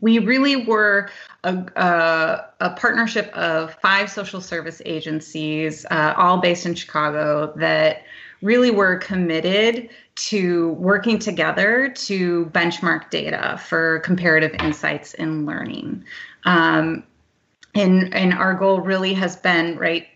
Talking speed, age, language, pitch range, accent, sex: 120 wpm, 30-49, English, 160-195 Hz, American, female